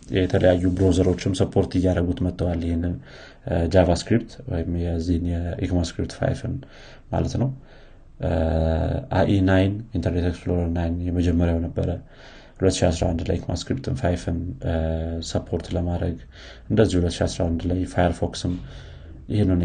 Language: Amharic